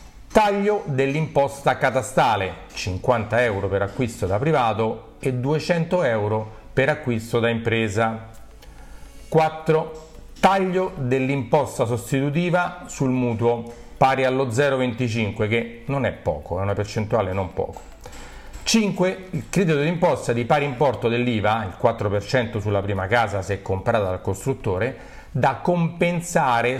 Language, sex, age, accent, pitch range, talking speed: Italian, male, 40-59, native, 105-140 Hz, 120 wpm